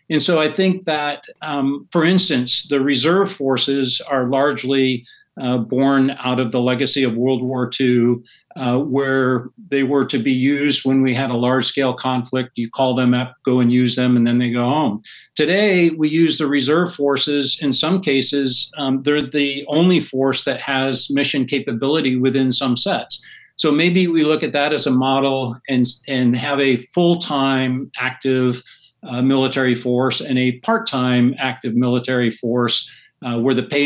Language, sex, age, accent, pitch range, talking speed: English, male, 50-69, American, 125-145 Hz, 175 wpm